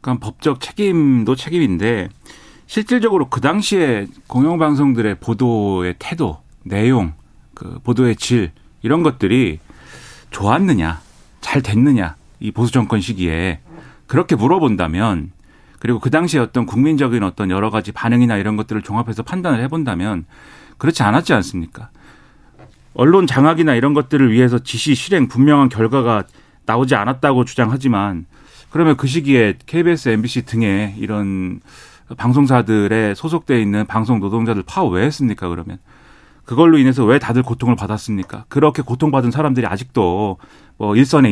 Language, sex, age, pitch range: Korean, male, 40-59, 105-140 Hz